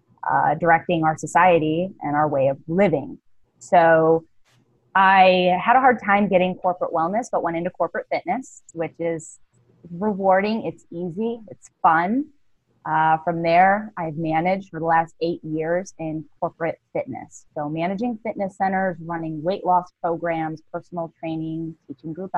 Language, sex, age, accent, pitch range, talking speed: English, female, 20-39, American, 155-180 Hz, 145 wpm